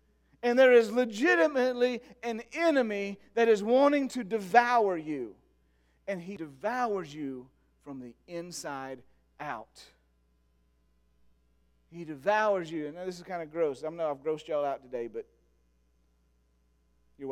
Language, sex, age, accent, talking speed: English, male, 40-59, American, 130 wpm